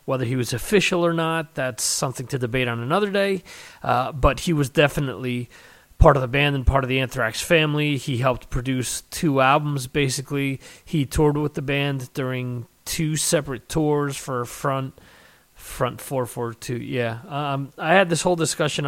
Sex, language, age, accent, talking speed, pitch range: male, English, 30-49, American, 180 wpm, 120-145 Hz